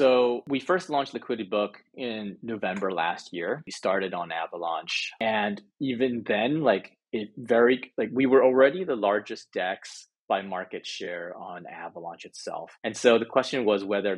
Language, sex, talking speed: English, male, 165 wpm